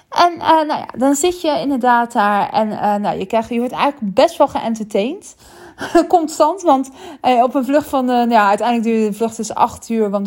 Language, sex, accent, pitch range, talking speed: Dutch, female, Dutch, 205-280 Hz, 215 wpm